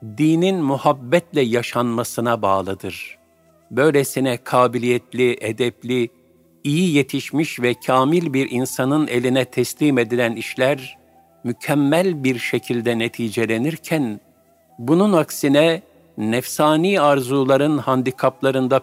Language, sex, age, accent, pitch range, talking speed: Turkish, male, 50-69, native, 120-150 Hz, 85 wpm